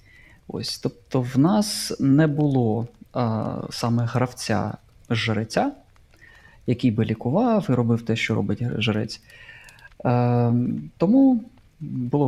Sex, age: male, 20-39